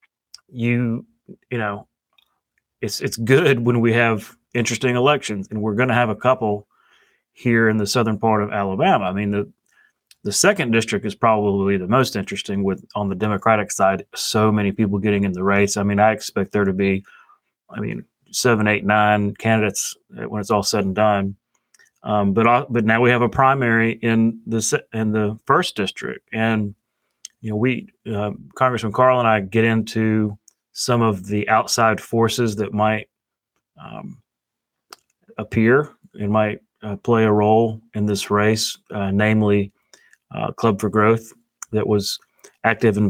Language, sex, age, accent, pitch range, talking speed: English, male, 30-49, American, 105-120 Hz, 170 wpm